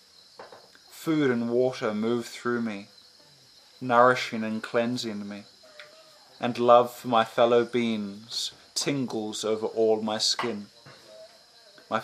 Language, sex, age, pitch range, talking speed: English, male, 20-39, 105-120 Hz, 110 wpm